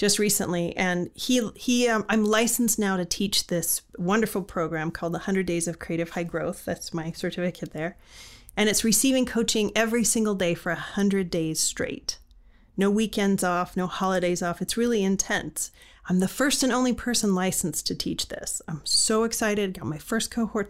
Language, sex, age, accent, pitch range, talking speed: English, female, 40-59, American, 180-230 Hz, 185 wpm